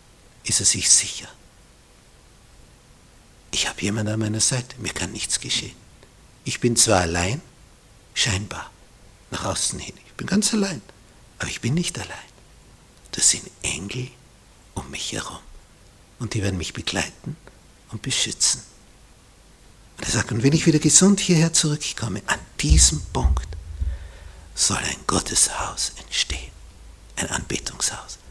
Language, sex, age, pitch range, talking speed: German, male, 60-79, 85-120 Hz, 135 wpm